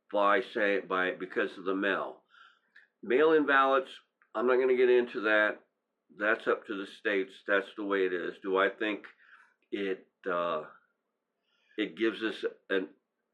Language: English